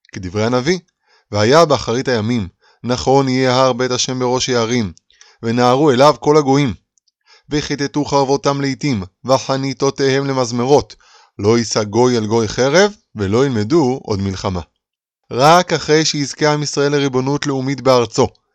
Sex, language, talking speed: male, Hebrew, 125 wpm